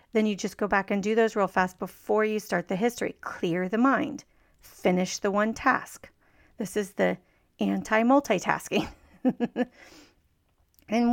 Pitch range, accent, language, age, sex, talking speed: 185-230 Hz, American, English, 40-59, female, 145 wpm